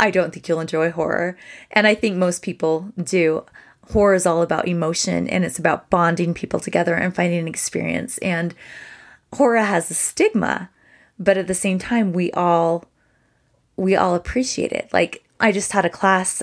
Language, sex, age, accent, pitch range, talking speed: English, female, 20-39, American, 175-215 Hz, 180 wpm